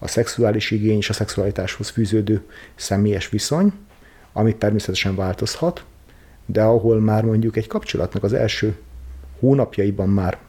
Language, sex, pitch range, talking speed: Hungarian, male, 105-120 Hz, 125 wpm